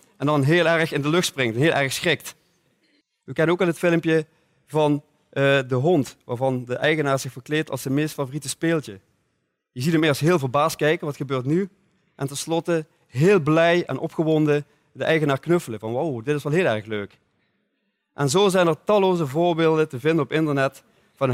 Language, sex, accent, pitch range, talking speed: Dutch, male, Dutch, 125-160 Hz, 195 wpm